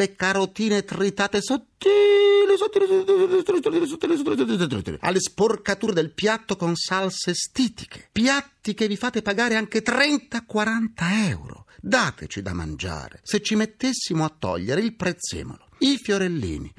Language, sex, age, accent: Italian, male, 50-69, native